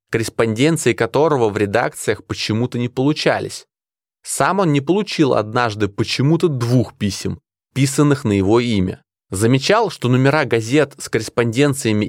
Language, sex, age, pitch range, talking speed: Russian, male, 20-39, 105-140 Hz, 125 wpm